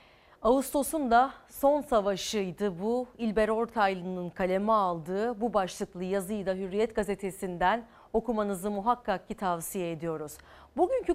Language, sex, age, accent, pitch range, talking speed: Turkish, female, 40-59, native, 195-270 Hz, 115 wpm